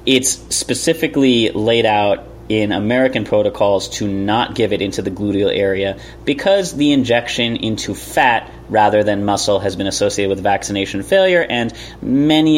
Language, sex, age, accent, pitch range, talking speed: English, male, 30-49, American, 105-130 Hz, 150 wpm